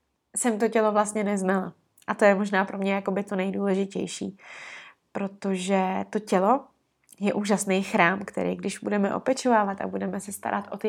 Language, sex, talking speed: Czech, female, 170 wpm